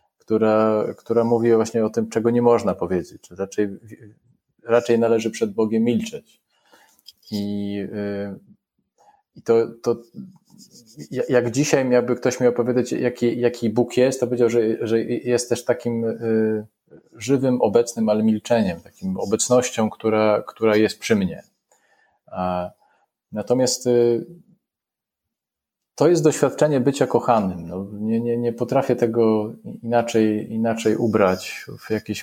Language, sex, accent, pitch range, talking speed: Polish, male, native, 105-120 Hz, 125 wpm